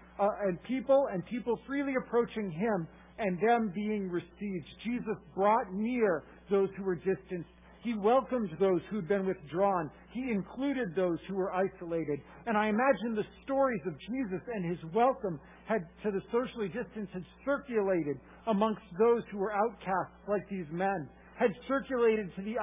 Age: 50-69